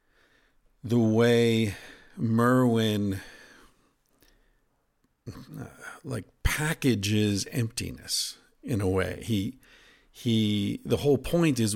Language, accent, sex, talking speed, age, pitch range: English, American, male, 80 wpm, 50-69, 100-130 Hz